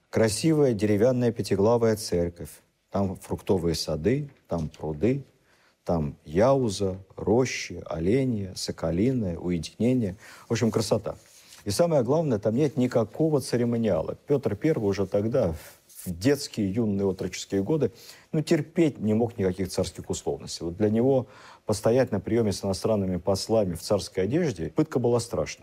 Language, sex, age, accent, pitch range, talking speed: Russian, male, 50-69, native, 95-120 Hz, 135 wpm